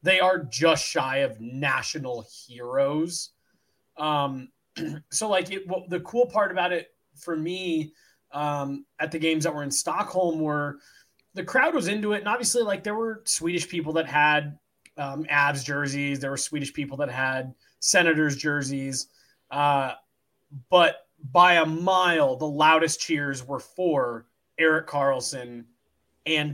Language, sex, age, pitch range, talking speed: English, male, 20-39, 135-170 Hz, 150 wpm